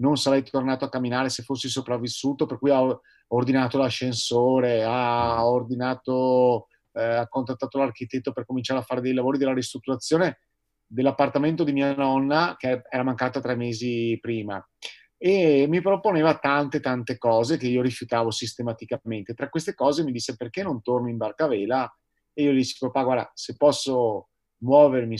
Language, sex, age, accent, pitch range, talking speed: Italian, male, 30-49, native, 120-145 Hz, 150 wpm